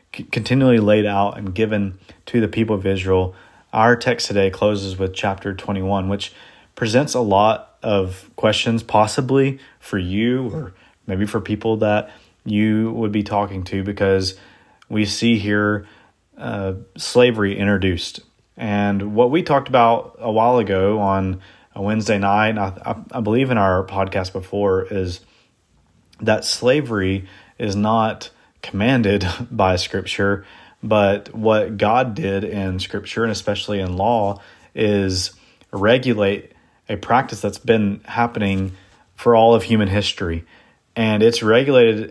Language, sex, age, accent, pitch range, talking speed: English, male, 30-49, American, 95-110 Hz, 135 wpm